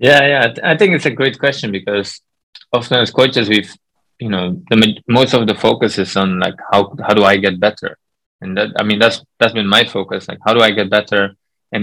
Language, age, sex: English, 20-39, male